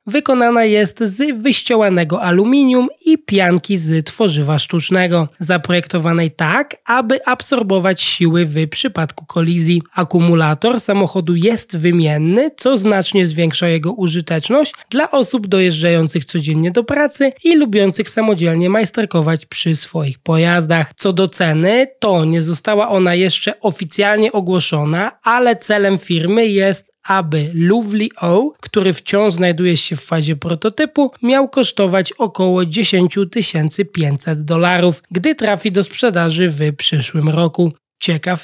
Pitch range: 165-225 Hz